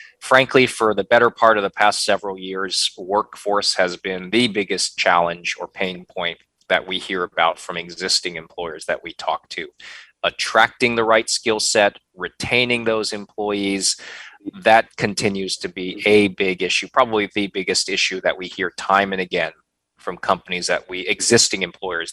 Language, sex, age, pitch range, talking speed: English, male, 20-39, 95-115 Hz, 165 wpm